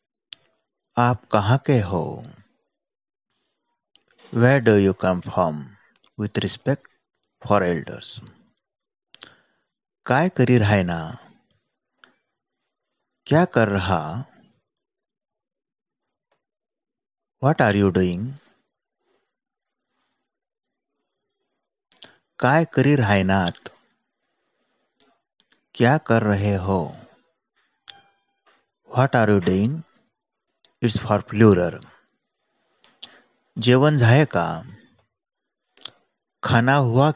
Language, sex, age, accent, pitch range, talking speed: Marathi, male, 50-69, native, 100-125 Hz, 60 wpm